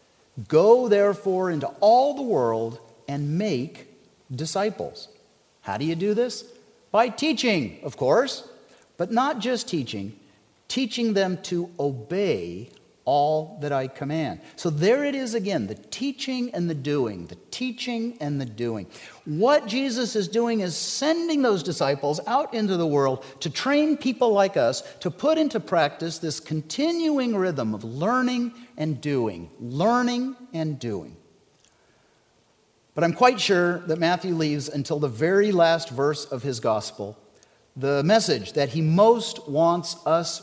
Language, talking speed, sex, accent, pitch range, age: English, 145 wpm, male, American, 145-240 Hz, 50-69